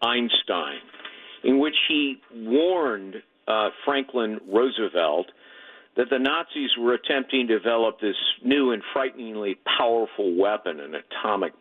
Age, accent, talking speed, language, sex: 50-69, American, 120 wpm, English, male